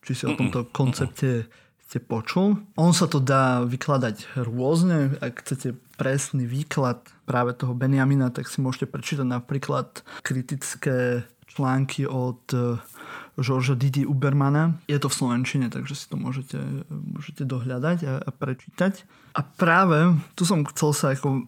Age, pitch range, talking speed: 20-39, 130-150 Hz, 140 wpm